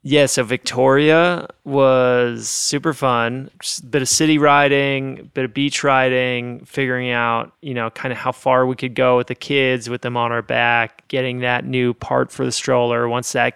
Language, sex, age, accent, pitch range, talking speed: English, male, 30-49, American, 120-140 Hz, 185 wpm